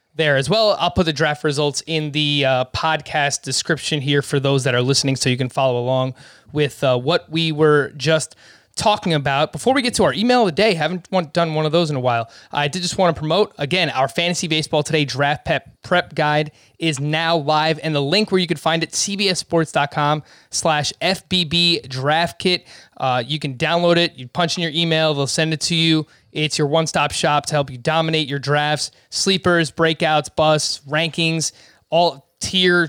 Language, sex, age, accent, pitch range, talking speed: English, male, 20-39, American, 140-170 Hz, 195 wpm